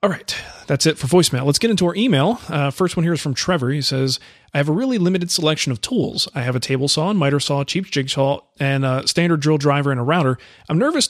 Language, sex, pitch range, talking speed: English, male, 130-170 Hz, 260 wpm